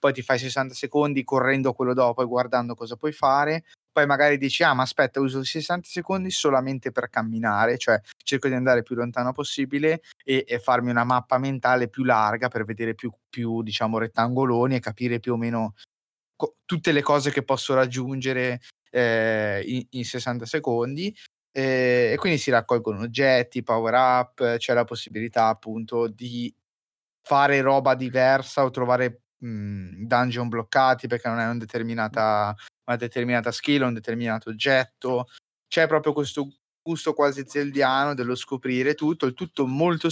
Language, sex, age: Italian, male, 20-39